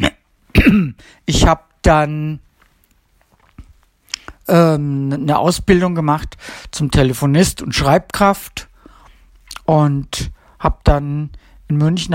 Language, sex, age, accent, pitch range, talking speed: German, male, 60-79, German, 135-170 Hz, 80 wpm